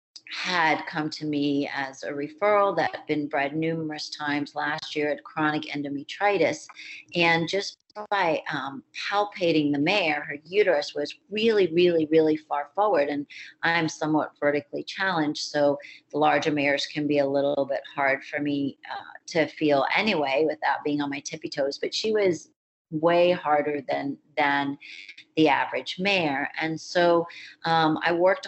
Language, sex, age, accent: English, female, 40-59, American